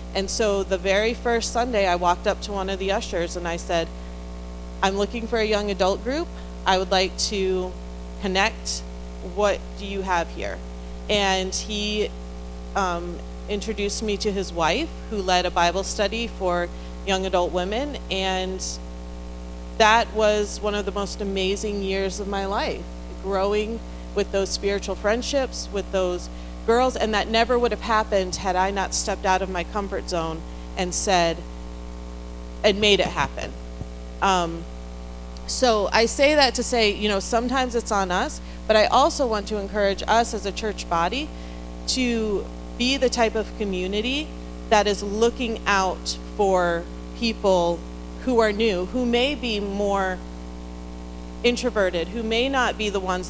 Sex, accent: female, American